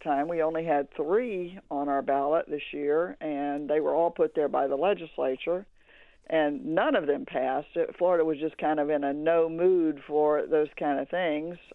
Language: English